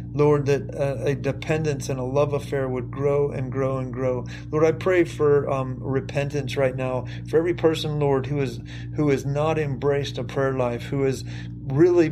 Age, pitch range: 40-59, 130-150 Hz